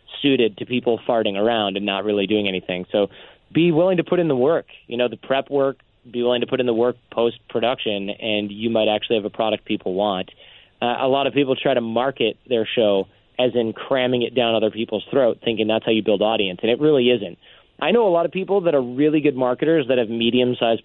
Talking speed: 235 wpm